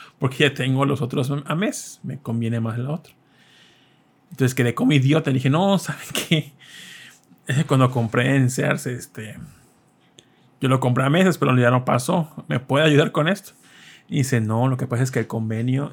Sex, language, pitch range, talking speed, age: male, Spanish, 125-150 Hz, 190 wpm, 30-49